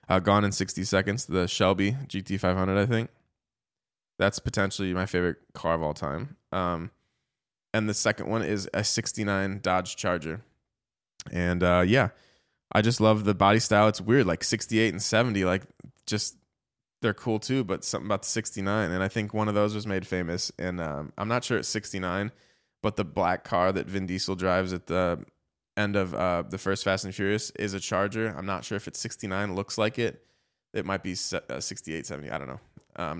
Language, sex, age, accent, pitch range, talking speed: English, male, 20-39, American, 90-110 Hz, 195 wpm